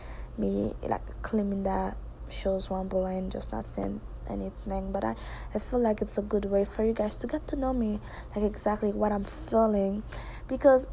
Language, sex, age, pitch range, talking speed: English, female, 20-39, 190-220 Hz, 185 wpm